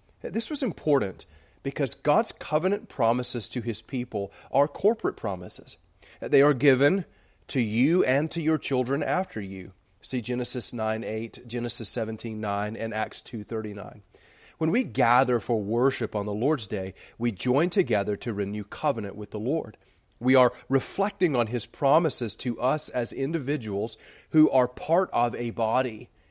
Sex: male